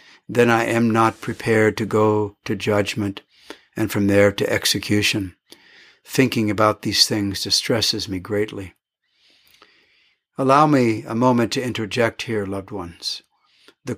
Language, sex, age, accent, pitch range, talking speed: English, male, 60-79, American, 100-120 Hz, 135 wpm